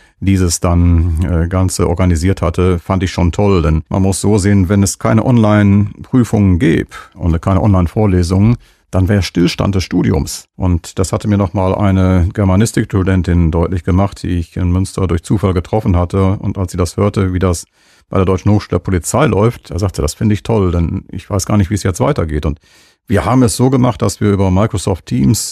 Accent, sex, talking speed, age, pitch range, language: German, male, 200 wpm, 40-59, 95-105 Hz, German